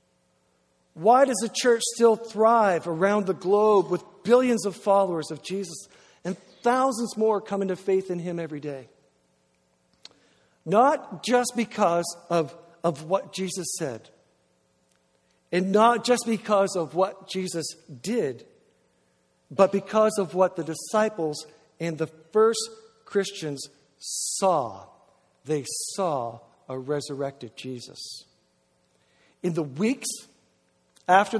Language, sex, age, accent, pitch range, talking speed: English, male, 60-79, American, 160-225 Hz, 115 wpm